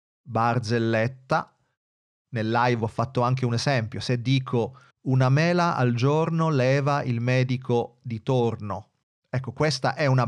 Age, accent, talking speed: 30-49, native, 135 wpm